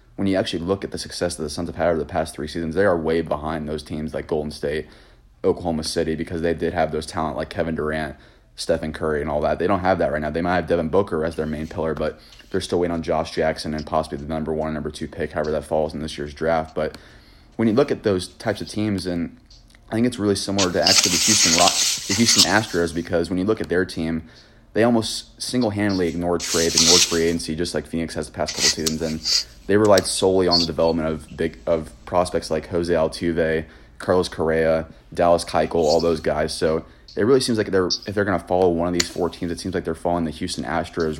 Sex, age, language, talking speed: male, 30-49, English, 250 wpm